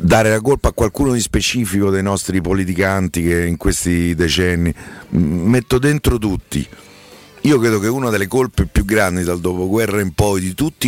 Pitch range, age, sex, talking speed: 90-115 Hz, 50-69, male, 170 wpm